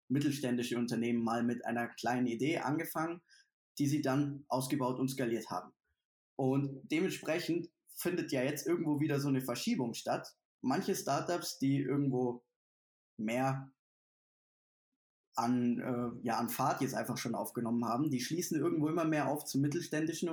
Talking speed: 140 wpm